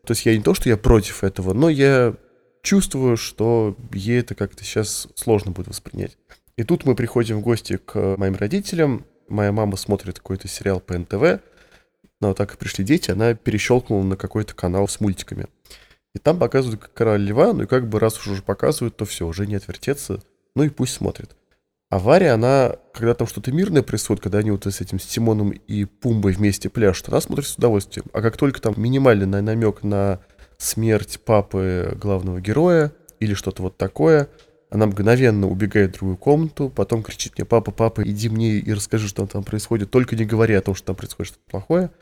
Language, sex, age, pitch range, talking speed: Russian, male, 20-39, 100-120 Hz, 190 wpm